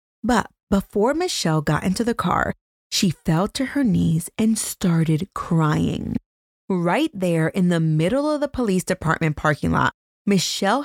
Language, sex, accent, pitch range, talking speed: English, female, American, 160-225 Hz, 150 wpm